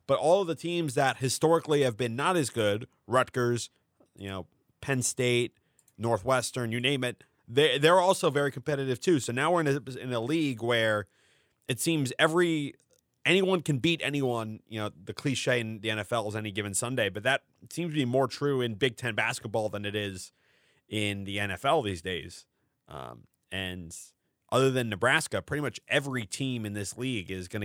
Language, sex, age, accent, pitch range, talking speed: English, male, 30-49, American, 105-130 Hz, 190 wpm